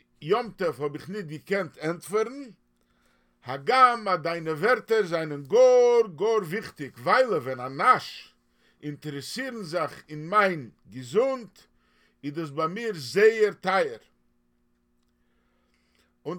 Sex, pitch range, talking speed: male, 145-215 Hz, 110 wpm